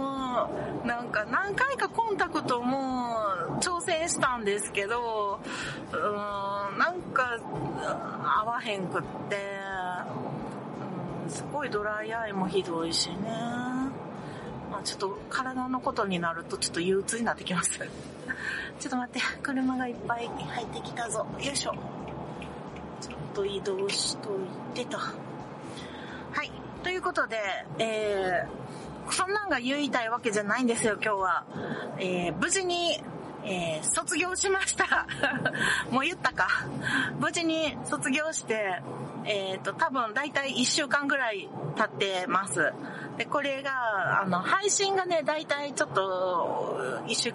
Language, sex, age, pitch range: Japanese, female, 40-59, 200-290 Hz